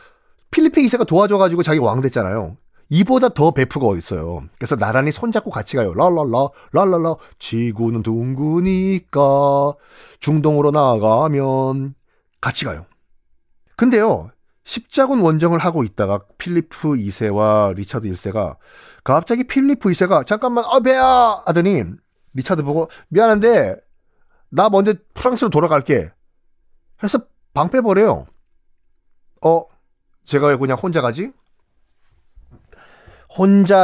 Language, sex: Korean, male